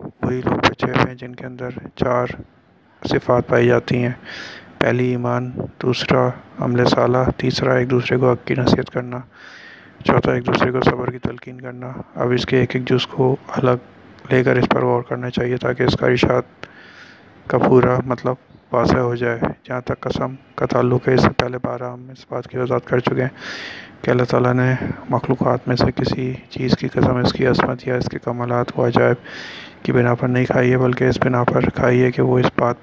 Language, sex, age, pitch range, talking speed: Urdu, male, 30-49, 125-130 Hz, 200 wpm